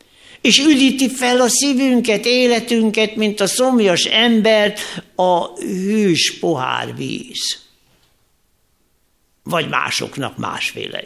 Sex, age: male, 60-79